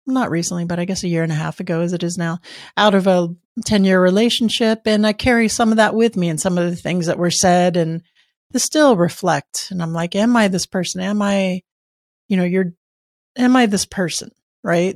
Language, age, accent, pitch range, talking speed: English, 40-59, American, 175-215 Hz, 230 wpm